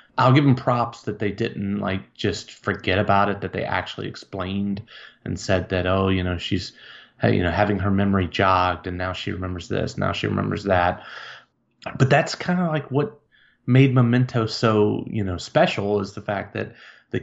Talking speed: 190 wpm